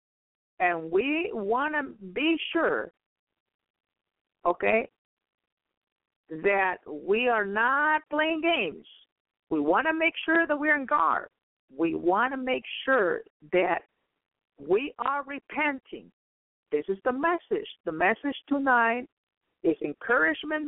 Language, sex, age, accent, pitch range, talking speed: English, female, 50-69, American, 195-320 Hz, 115 wpm